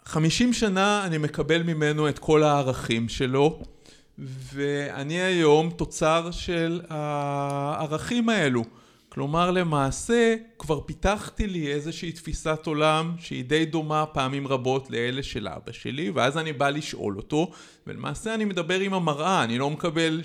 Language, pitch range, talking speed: Hebrew, 130-165 Hz, 135 wpm